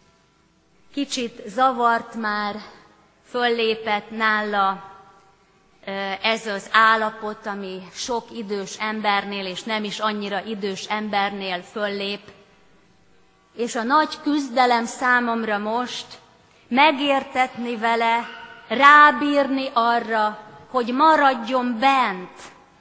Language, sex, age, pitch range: Hungarian, female, 30-49, 205-275 Hz